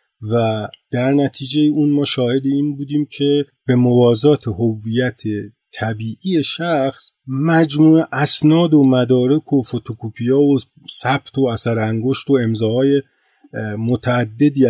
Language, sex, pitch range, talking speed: Persian, male, 110-145 Hz, 115 wpm